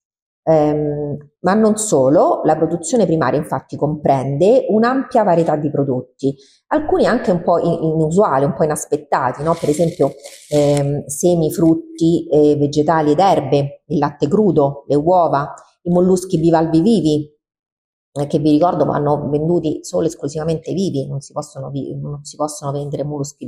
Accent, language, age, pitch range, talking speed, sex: native, Italian, 40-59, 145-180 Hz, 150 wpm, female